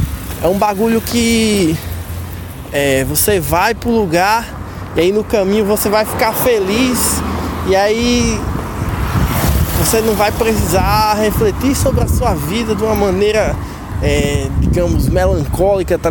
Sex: male